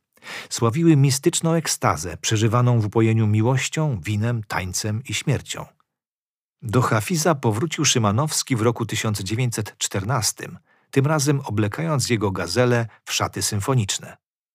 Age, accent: 40-59, native